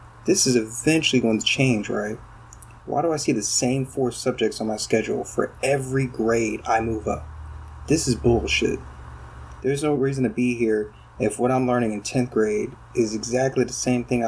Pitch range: 110-130 Hz